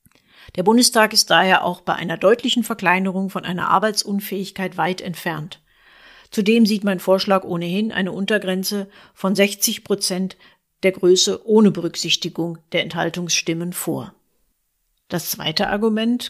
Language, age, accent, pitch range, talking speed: German, 50-69, German, 185-225 Hz, 125 wpm